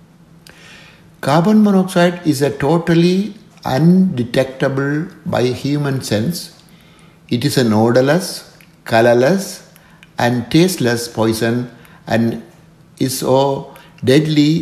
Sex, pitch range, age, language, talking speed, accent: male, 120-165 Hz, 60-79, Tamil, 85 wpm, native